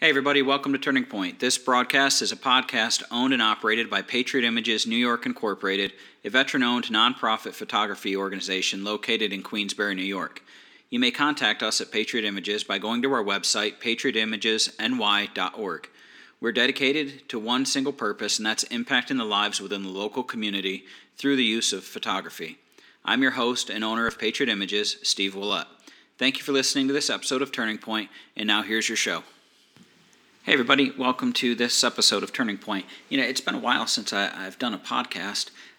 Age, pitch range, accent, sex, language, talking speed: 40-59, 100-125 Hz, American, male, English, 180 wpm